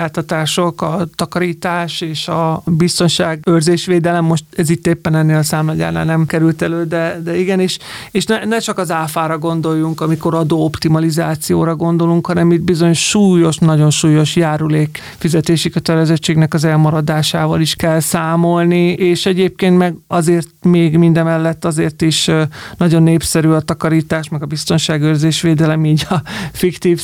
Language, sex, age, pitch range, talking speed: Hungarian, male, 30-49, 160-180 Hz, 135 wpm